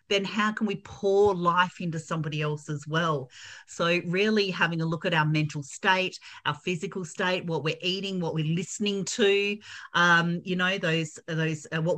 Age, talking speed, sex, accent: 40-59, 185 wpm, female, Australian